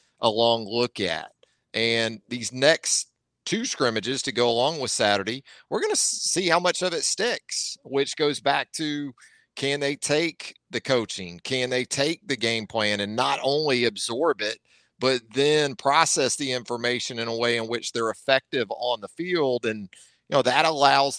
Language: English